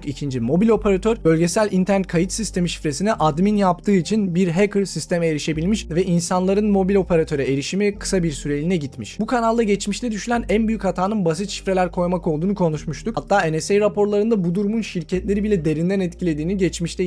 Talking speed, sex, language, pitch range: 160 wpm, male, Turkish, 160-195 Hz